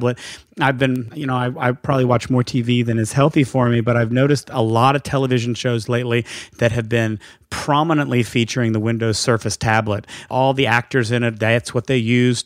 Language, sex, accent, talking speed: English, male, American, 200 wpm